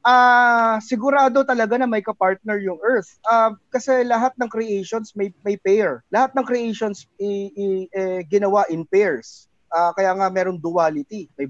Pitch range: 170-215 Hz